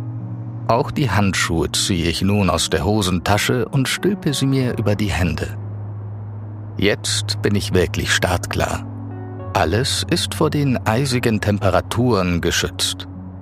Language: German